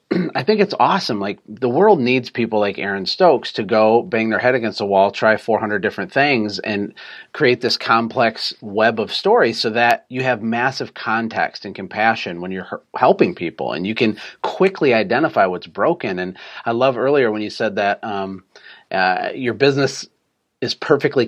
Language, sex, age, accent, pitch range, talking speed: English, male, 30-49, American, 95-115 Hz, 180 wpm